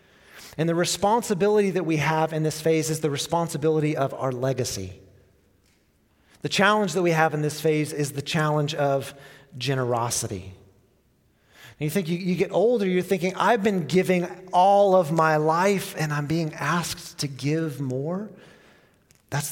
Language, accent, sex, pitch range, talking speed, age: English, American, male, 135-170 Hz, 160 wpm, 30-49